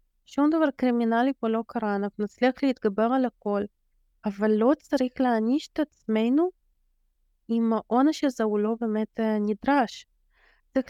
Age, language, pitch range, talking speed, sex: 20-39, Hebrew, 220-280 Hz, 140 wpm, female